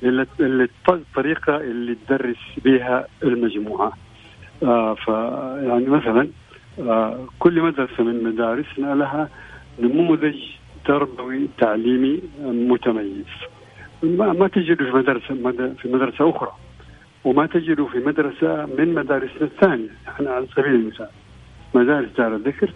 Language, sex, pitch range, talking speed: Arabic, male, 115-140 Hz, 110 wpm